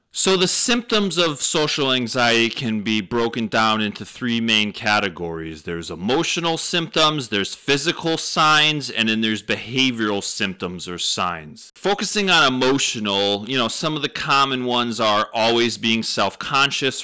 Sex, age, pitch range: male, 30-49, 105-150 Hz